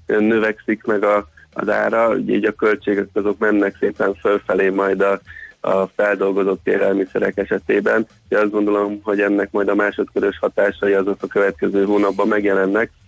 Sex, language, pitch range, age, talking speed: male, Hungarian, 100-110 Hz, 20-39, 145 wpm